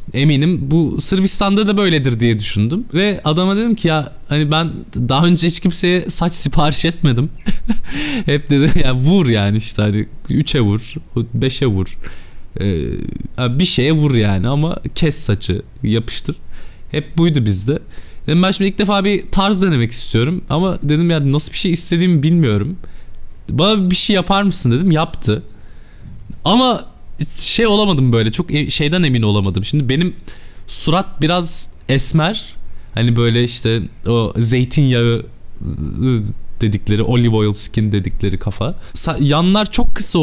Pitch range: 115-180 Hz